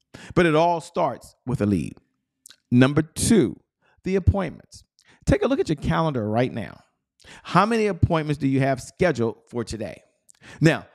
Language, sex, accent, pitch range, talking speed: English, male, American, 120-160 Hz, 160 wpm